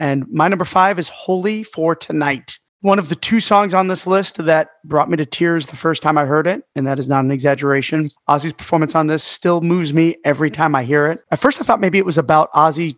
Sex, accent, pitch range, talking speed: male, American, 145-175 Hz, 250 wpm